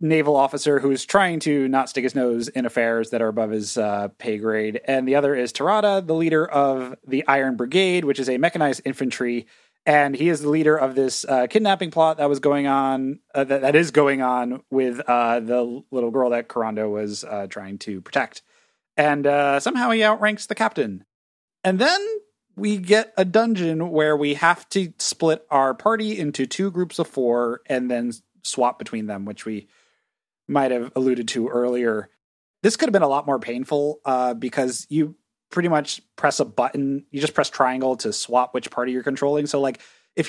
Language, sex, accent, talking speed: English, male, American, 200 wpm